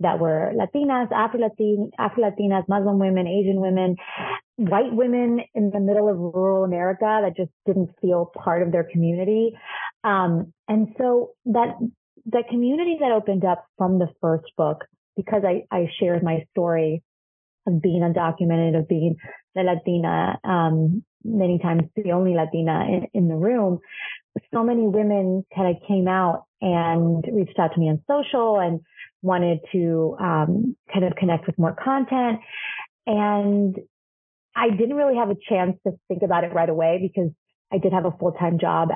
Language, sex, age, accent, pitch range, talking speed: English, female, 30-49, American, 165-210 Hz, 160 wpm